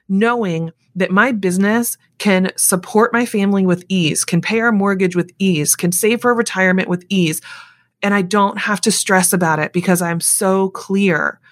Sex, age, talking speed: female, 20-39, 175 wpm